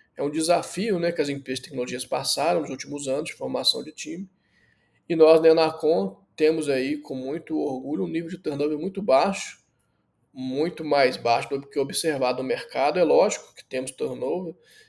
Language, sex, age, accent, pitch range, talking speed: Portuguese, male, 20-39, Brazilian, 135-170 Hz, 185 wpm